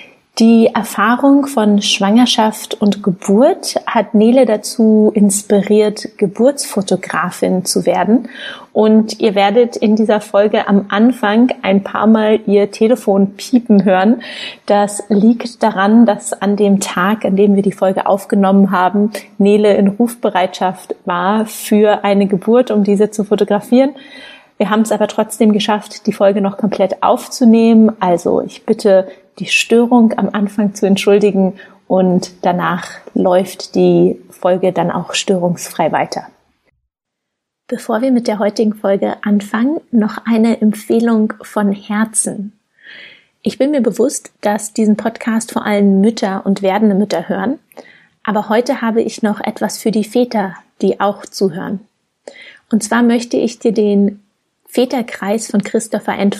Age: 30-49